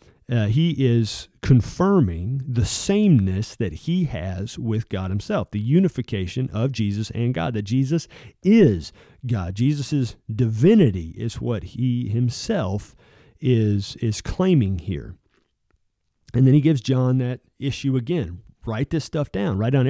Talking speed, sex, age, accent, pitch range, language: 140 wpm, male, 40-59, American, 105-140 Hz, English